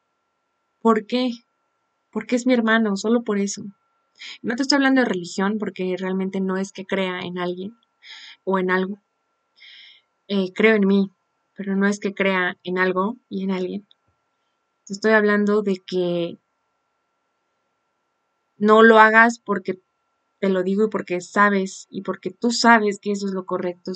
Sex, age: female, 20-39